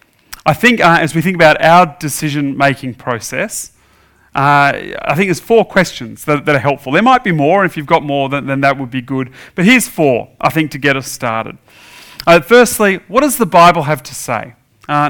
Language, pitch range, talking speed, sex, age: English, 140-180 Hz, 210 wpm, male, 40-59